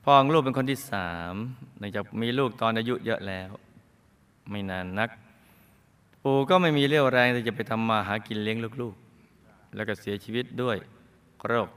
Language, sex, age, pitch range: Thai, male, 20-39, 95-125 Hz